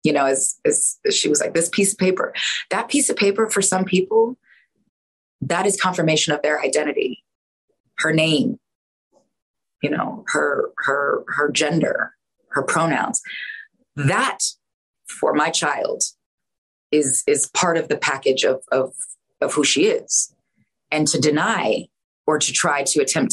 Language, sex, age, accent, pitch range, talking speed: English, female, 20-39, American, 140-225 Hz, 150 wpm